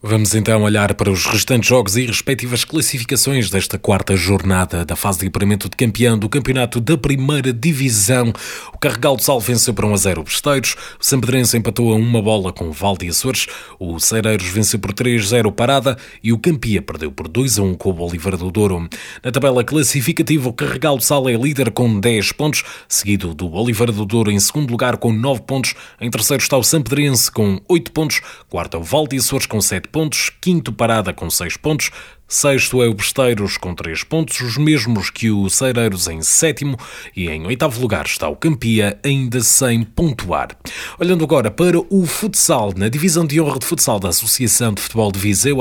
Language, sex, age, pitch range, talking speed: Portuguese, male, 20-39, 100-140 Hz, 200 wpm